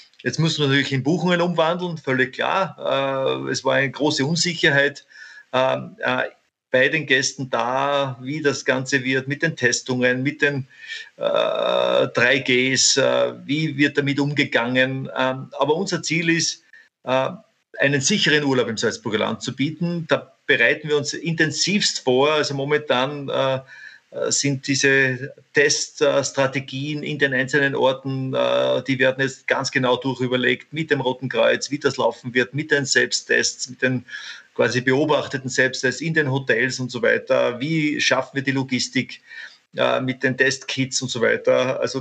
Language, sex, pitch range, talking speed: German, male, 130-150 Hz, 140 wpm